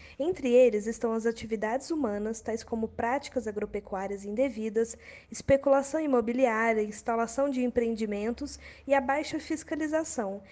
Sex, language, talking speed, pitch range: female, Portuguese, 115 wpm, 220-275 Hz